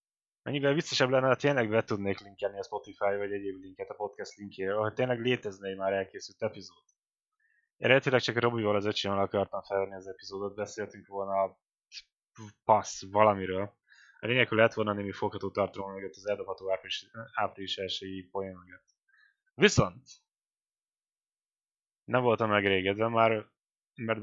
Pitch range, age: 100-115 Hz, 10-29